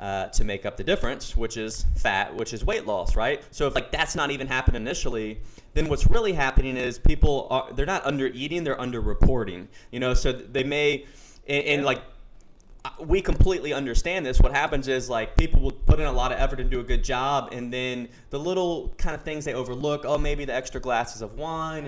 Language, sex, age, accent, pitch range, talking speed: English, male, 20-39, American, 115-135 Hz, 220 wpm